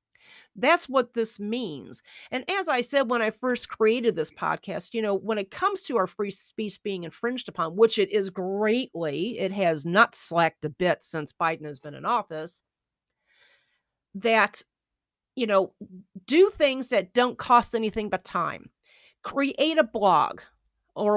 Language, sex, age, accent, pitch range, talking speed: English, female, 40-59, American, 195-260 Hz, 160 wpm